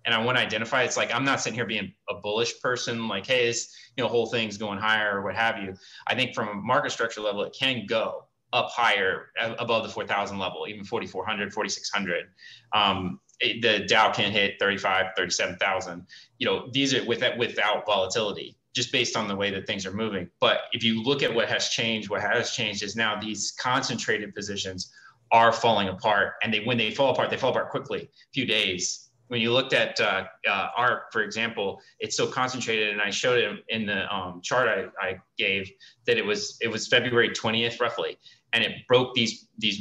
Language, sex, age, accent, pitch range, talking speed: English, male, 20-39, American, 105-125 Hz, 205 wpm